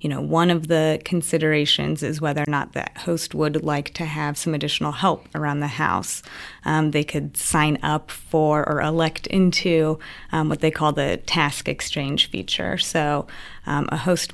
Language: English